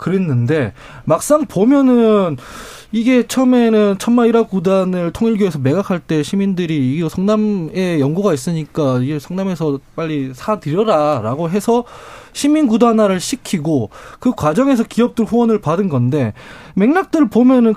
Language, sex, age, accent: Korean, male, 20-39, native